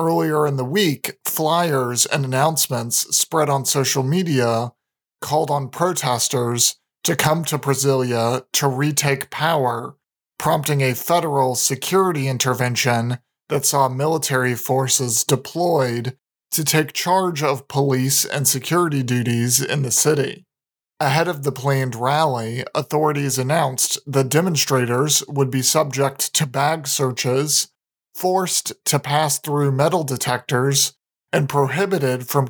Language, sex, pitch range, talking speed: English, male, 130-155 Hz, 120 wpm